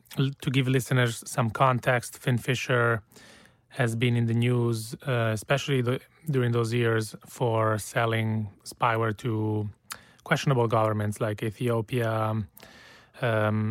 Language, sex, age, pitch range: English, male, 30-49, 110-130 Hz